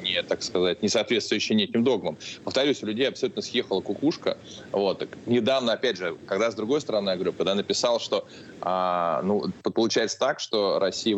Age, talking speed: 20-39, 170 wpm